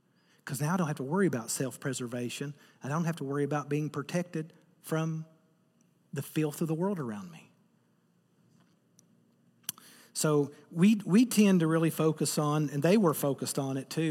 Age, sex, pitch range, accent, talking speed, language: 40-59, male, 140-175 Hz, American, 170 wpm, English